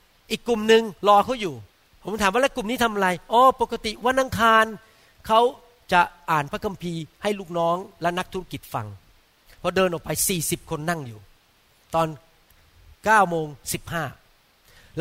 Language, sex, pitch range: Thai, male, 155-220 Hz